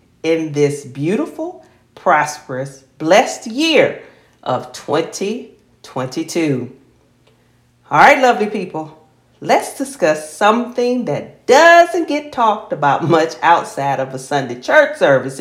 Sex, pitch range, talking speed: female, 145-230 Hz, 105 wpm